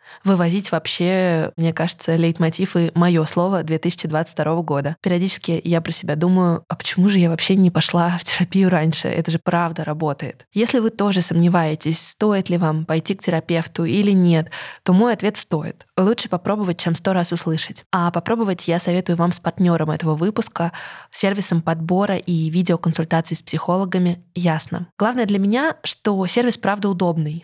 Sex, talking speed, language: female, 165 wpm, Russian